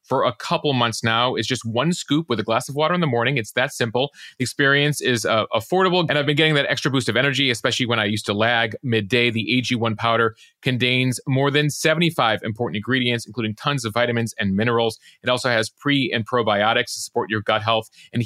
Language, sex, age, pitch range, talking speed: English, male, 30-49, 115-145 Hz, 225 wpm